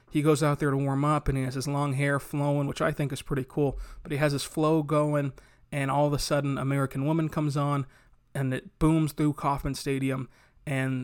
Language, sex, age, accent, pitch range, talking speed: English, male, 30-49, American, 140-160 Hz, 230 wpm